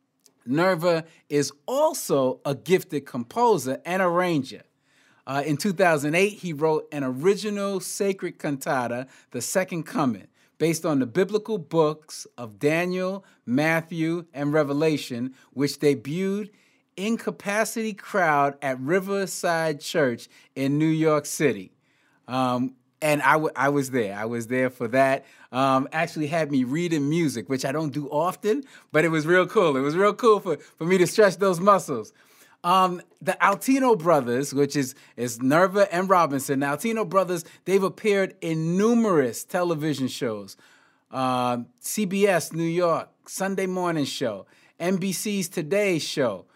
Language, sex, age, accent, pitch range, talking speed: English, male, 30-49, American, 140-195 Hz, 140 wpm